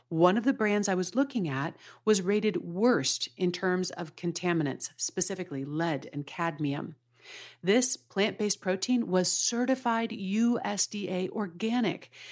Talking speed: 125 wpm